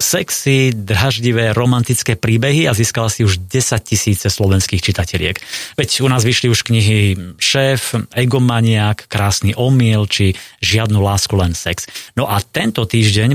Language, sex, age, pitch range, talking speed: Slovak, male, 30-49, 100-120 Hz, 140 wpm